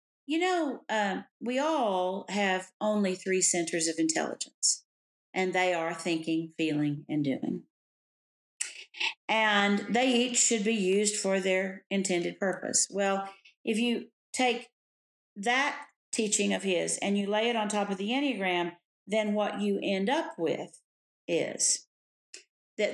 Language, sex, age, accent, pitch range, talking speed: English, female, 50-69, American, 180-240 Hz, 140 wpm